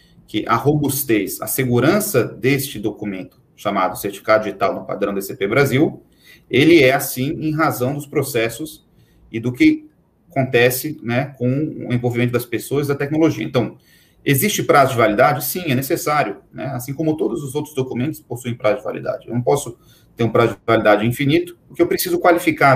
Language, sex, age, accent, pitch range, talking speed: Portuguese, male, 40-59, Brazilian, 115-145 Hz, 175 wpm